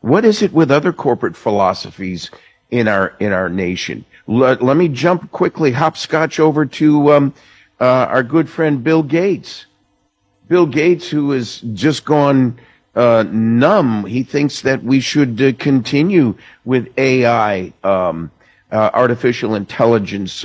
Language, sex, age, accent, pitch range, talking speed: English, male, 50-69, American, 115-150 Hz, 140 wpm